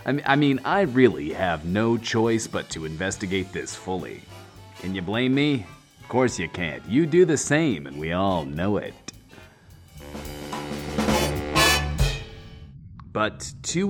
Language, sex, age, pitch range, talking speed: English, male, 30-49, 90-125 Hz, 135 wpm